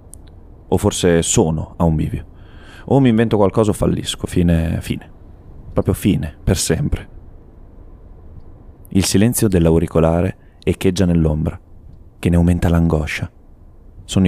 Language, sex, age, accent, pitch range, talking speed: Italian, male, 30-49, native, 85-95 Hz, 120 wpm